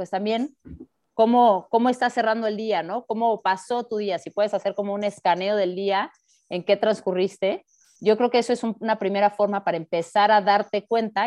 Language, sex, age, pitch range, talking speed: Spanish, female, 30-49, 190-235 Hz, 200 wpm